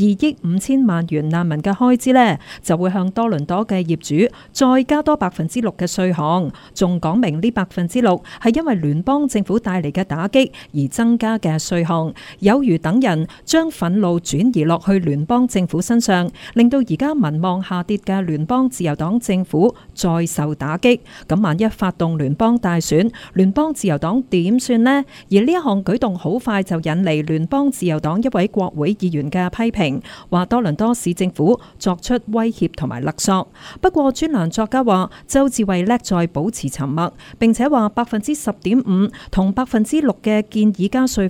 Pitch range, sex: 170-235 Hz, female